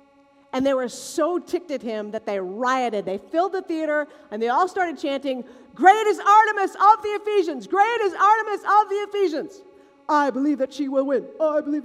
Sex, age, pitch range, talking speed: female, 40-59, 275-335 Hz, 200 wpm